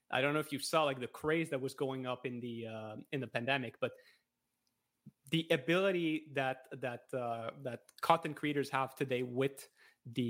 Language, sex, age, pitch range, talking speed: English, male, 20-39, 125-150 Hz, 185 wpm